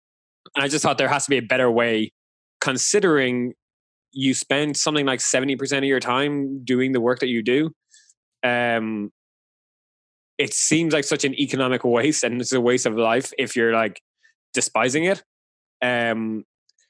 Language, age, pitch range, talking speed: English, 20-39, 115-135 Hz, 165 wpm